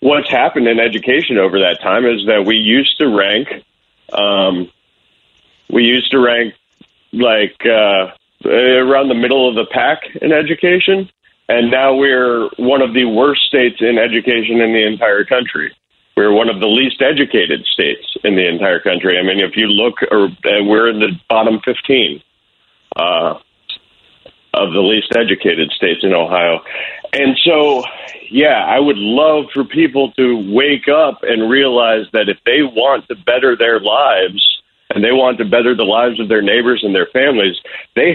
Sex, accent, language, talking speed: male, American, English, 170 wpm